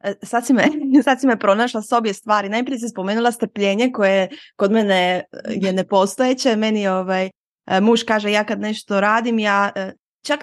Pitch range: 195-245 Hz